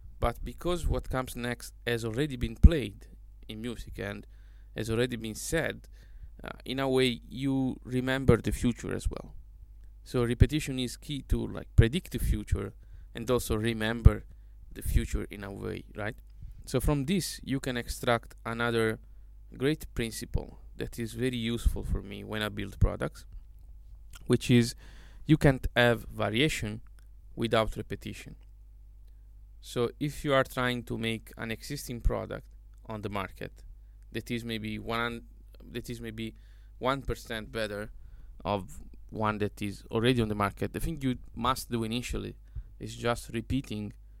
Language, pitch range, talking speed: English, 100-120 Hz, 150 wpm